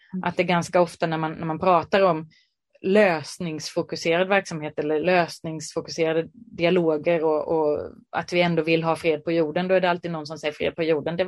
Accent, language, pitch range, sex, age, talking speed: native, Swedish, 165-220 Hz, female, 30-49, 190 wpm